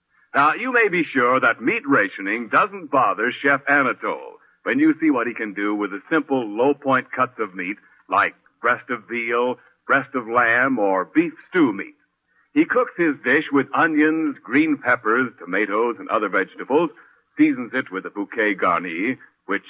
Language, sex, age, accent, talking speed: English, male, 60-79, American, 170 wpm